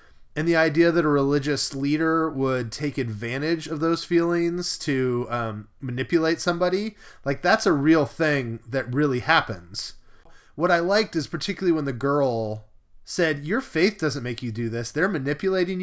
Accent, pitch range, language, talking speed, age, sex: American, 115-160 Hz, English, 165 wpm, 20-39, male